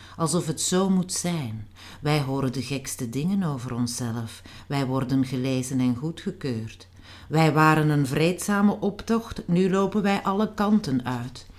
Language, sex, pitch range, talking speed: Dutch, female, 120-155 Hz, 145 wpm